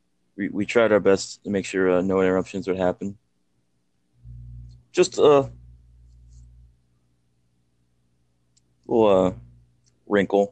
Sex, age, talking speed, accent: male, 20-39, 105 wpm, American